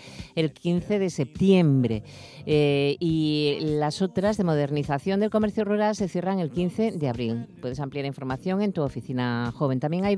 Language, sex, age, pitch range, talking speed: Spanish, female, 50-69, 140-185 Hz, 165 wpm